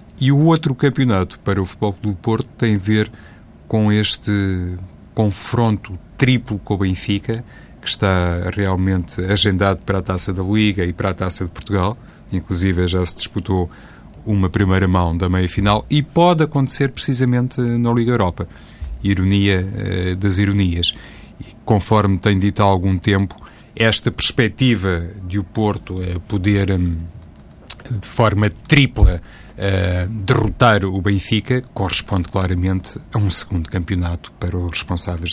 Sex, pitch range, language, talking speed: male, 95-110 Hz, Portuguese, 140 wpm